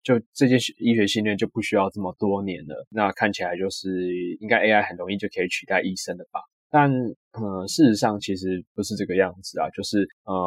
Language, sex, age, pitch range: Chinese, male, 20-39, 95-115 Hz